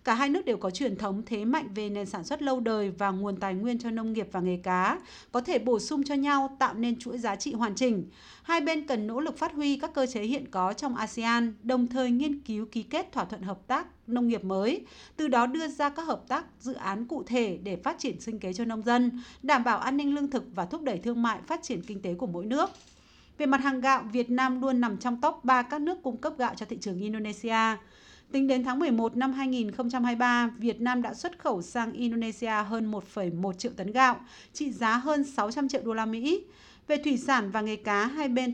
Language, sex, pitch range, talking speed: Vietnamese, female, 215-270 Hz, 245 wpm